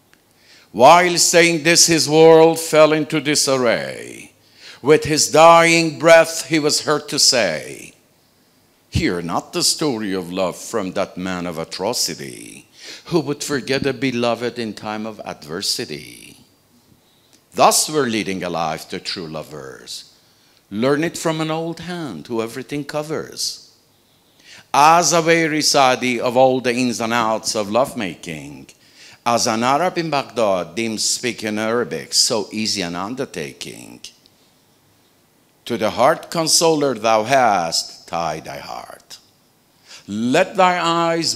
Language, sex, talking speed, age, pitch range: Persian, male, 130 wpm, 60-79, 110-160 Hz